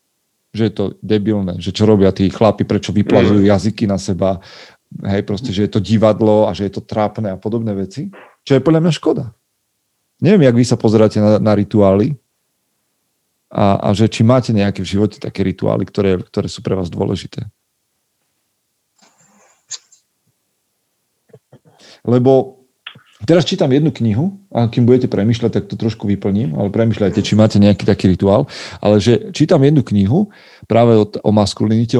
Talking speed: 160 wpm